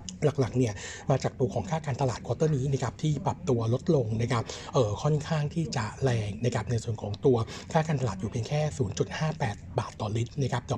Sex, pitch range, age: male, 115-145 Hz, 60-79